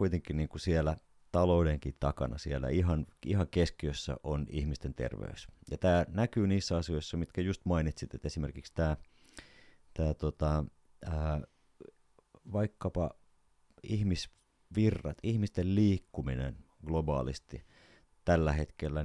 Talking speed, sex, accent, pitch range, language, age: 105 wpm, male, native, 75-95 Hz, Finnish, 30-49